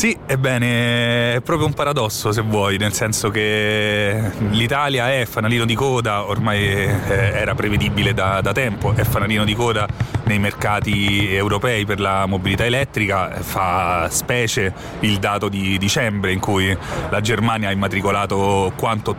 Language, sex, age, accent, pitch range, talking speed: Italian, male, 30-49, native, 105-125 Hz, 145 wpm